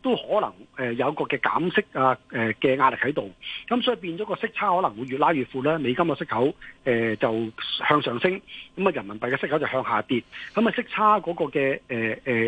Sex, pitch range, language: male, 125-170 Hz, Chinese